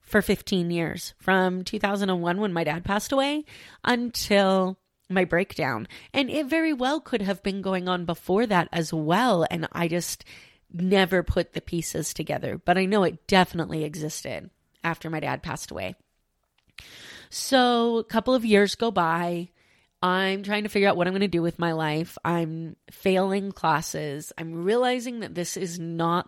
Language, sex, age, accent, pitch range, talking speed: English, female, 30-49, American, 165-210 Hz, 170 wpm